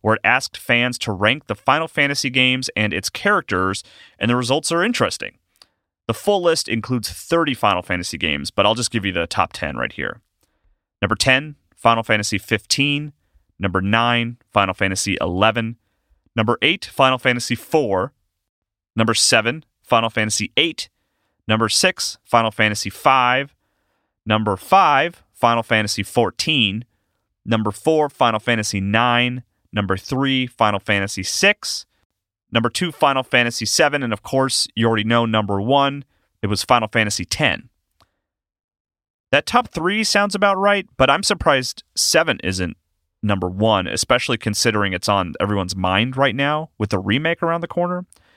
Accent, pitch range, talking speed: American, 100-135 Hz, 150 wpm